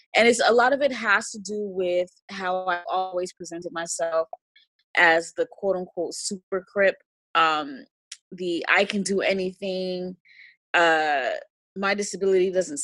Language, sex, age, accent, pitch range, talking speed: English, female, 20-39, American, 170-210 Hz, 140 wpm